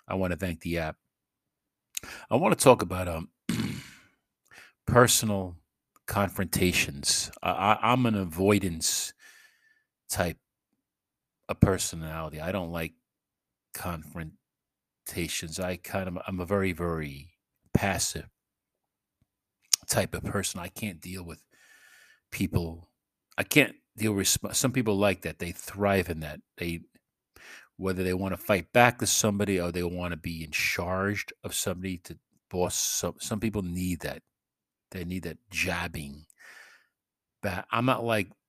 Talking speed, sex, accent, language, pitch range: 135 wpm, male, American, English, 85-110 Hz